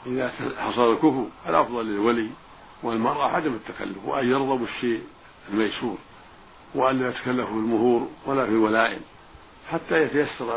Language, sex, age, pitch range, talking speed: Arabic, male, 60-79, 115-145 Hz, 115 wpm